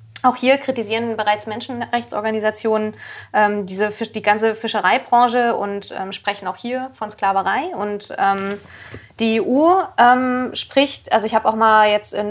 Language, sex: German, female